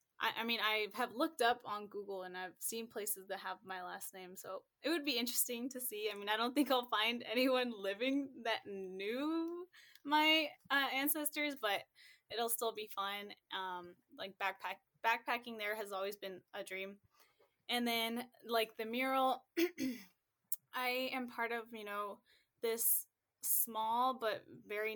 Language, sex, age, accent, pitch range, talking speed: English, female, 10-29, American, 195-245 Hz, 165 wpm